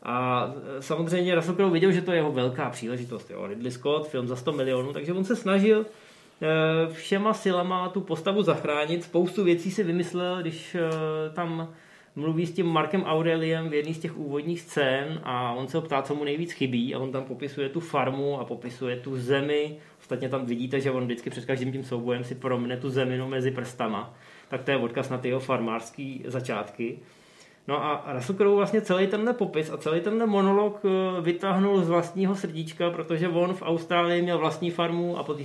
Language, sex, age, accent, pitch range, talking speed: Czech, male, 20-39, native, 135-185 Hz, 190 wpm